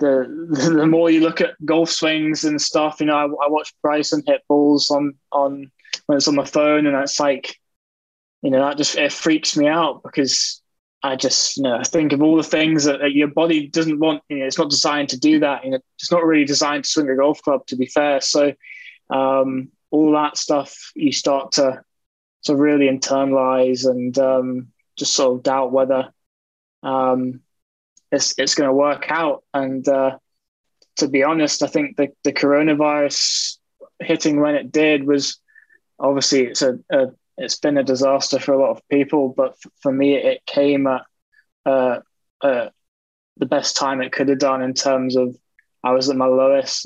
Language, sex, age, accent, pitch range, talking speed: English, male, 20-39, British, 135-150 Hz, 195 wpm